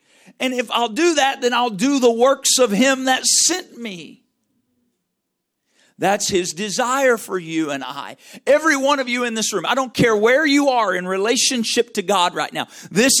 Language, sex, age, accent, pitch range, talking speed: English, male, 50-69, American, 180-265 Hz, 190 wpm